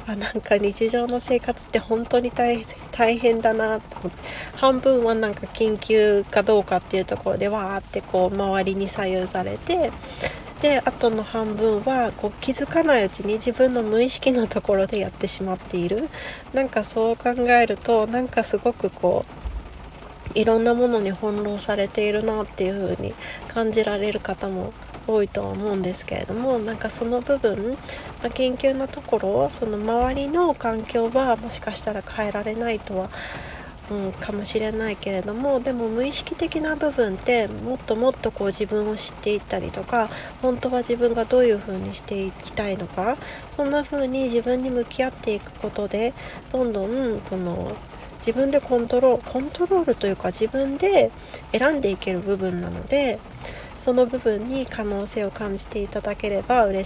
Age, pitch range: 20-39, 205-245 Hz